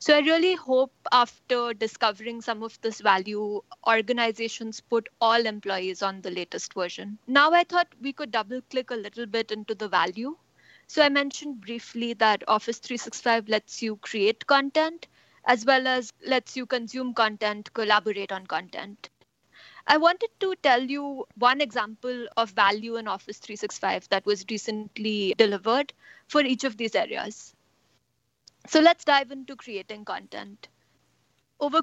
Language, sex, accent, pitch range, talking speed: English, female, Indian, 215-265 Hz, 150 wpm